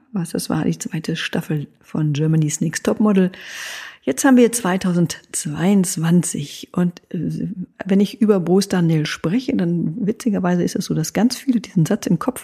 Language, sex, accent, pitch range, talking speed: German, female, German, 175-235 Hz, 170 wpm